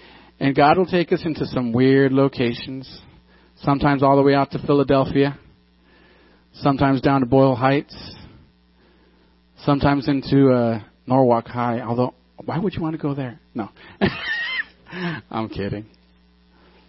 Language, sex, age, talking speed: English, male, 40-59, 130 wpm